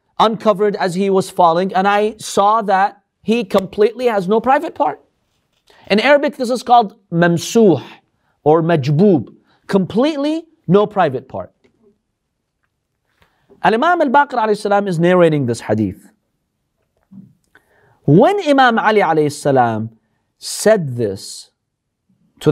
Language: English